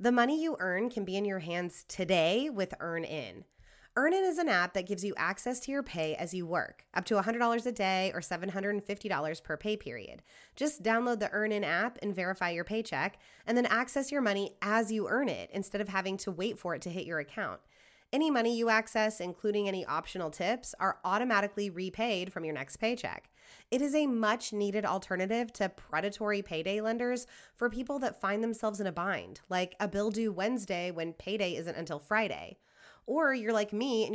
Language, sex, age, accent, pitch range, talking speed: English, female, 20-39, American, 185-240 Hz, 200 wpm